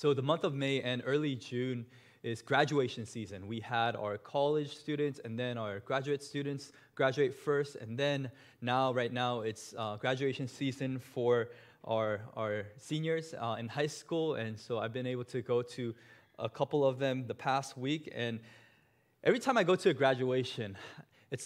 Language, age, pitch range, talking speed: English, 20-39, 115-145 Hz, 180 wpm